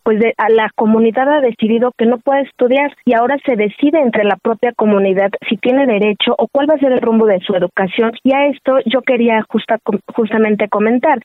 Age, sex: 30-49, female